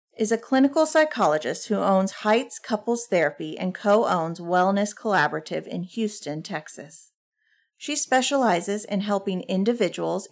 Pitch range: 185-245 Hz